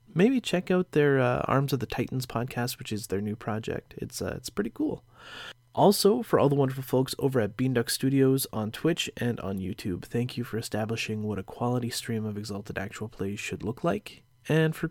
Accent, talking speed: American, 215 wpm